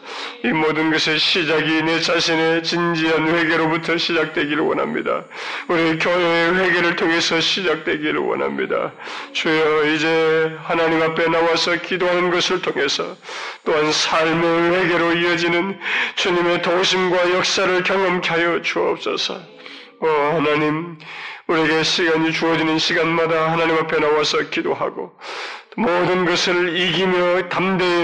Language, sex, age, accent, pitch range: Korean, male, 30-49, native, 155-170 Hz